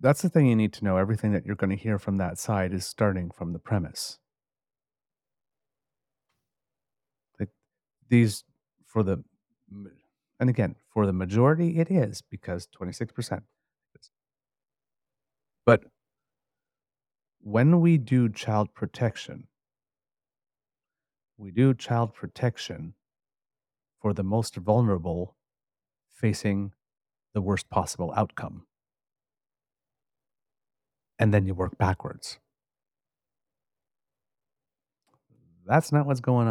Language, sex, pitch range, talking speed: English, male, 100-130 Hz, 100 wpm